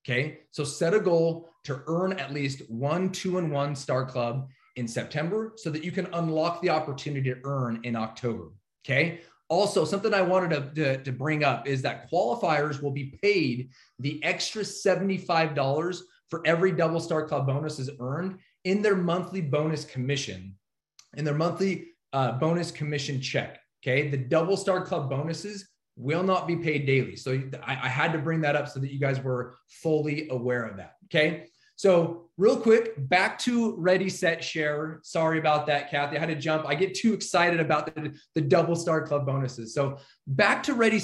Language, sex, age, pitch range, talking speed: English, male, 30-49, 140-180 Hz, 185 wpm